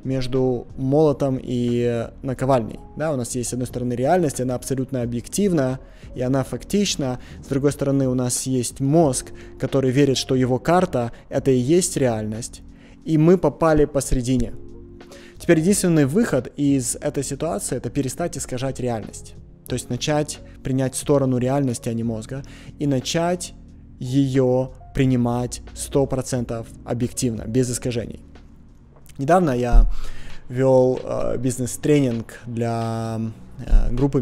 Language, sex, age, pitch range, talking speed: Russian, male, 20-39, 120-140 Hz, 125 wpm